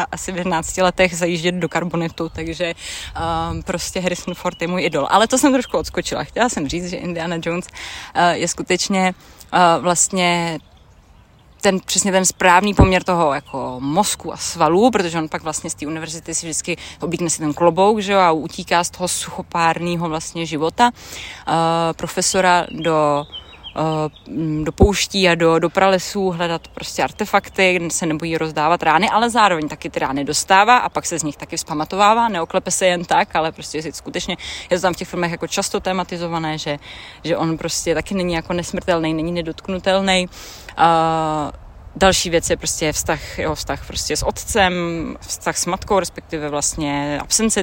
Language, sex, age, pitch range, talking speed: Czech, female, 20-39, 160-190 Hz, 170 wpm